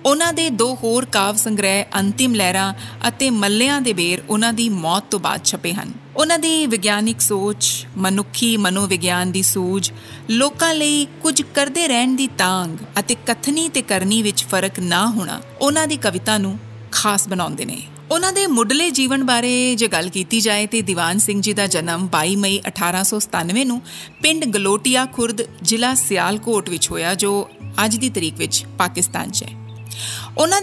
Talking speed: 130 wpm